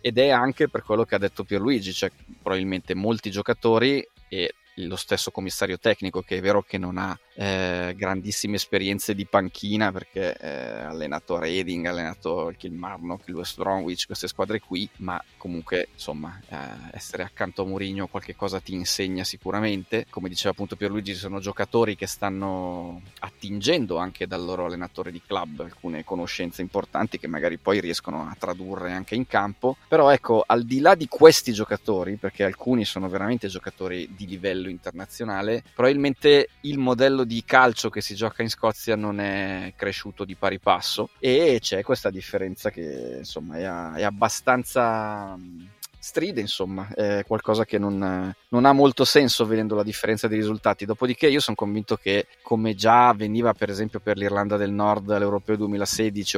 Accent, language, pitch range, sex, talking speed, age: native, Italian, 95-110 Hz, male, 165 wpm, 30-49